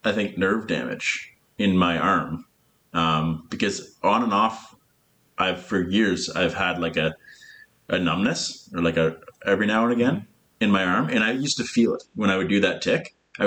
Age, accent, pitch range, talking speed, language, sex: 30-49, American, 90-120 Hz, 195 wpm, English, male